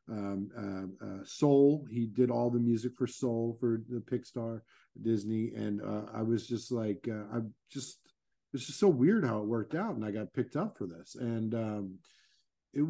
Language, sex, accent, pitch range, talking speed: English, male, American, 115-150 Hz, 195 wpm